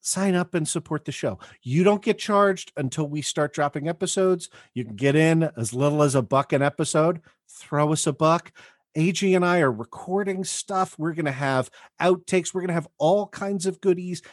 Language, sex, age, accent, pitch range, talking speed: English, male, 40-59, American, 120-165 Hz, 205 wpm